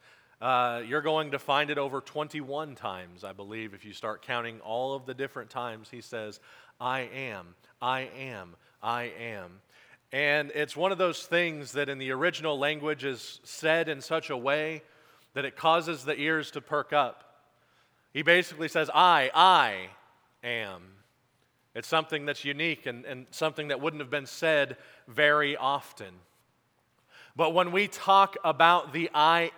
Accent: American